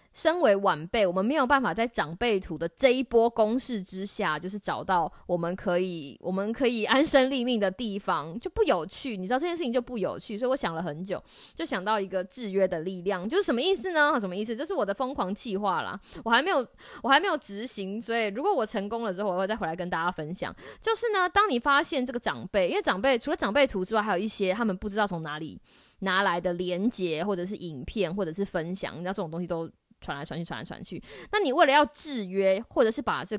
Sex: female